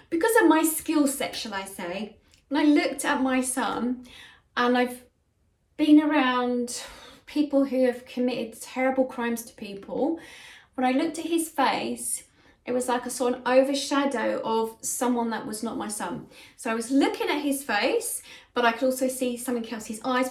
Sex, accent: female, British